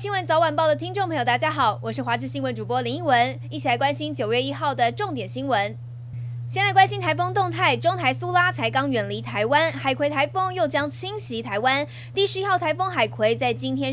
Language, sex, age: Chinese, female, 20-39